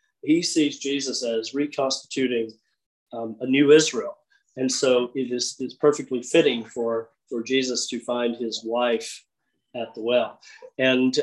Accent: American